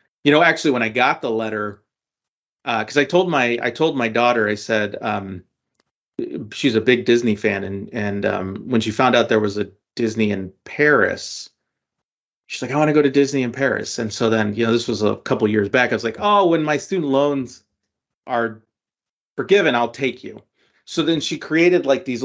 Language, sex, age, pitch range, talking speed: English, male, 30-49, 110-145 Hz, 210 wpm